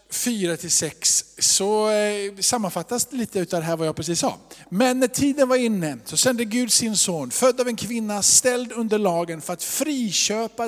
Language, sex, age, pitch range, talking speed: Swedish, male, 50-69, 170-215 Hz, 185 wpm